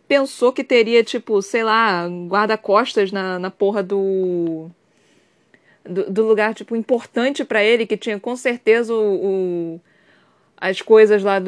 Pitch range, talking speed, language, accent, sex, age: 210-295 Hz, 125 wpm, Portuguese, Brazilian, female, 20-39